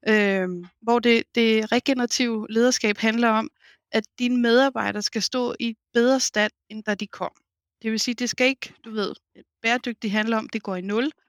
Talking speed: 185 wpm